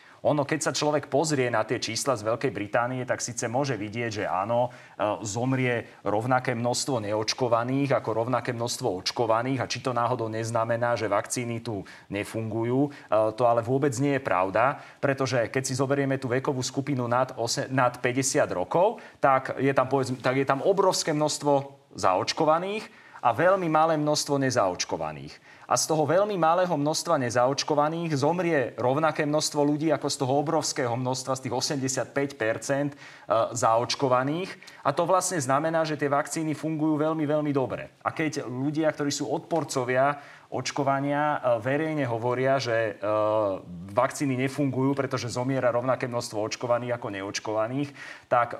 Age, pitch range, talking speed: 30-49, 115-145 Hz, 145 wpm